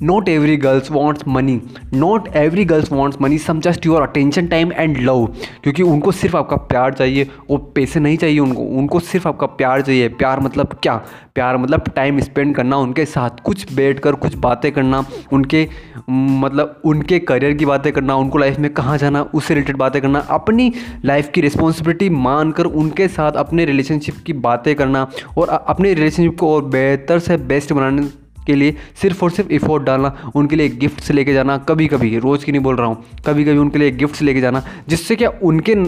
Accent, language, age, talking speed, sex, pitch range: native, Hindi, 20-39, 190 wpm, male, 135-160 Hz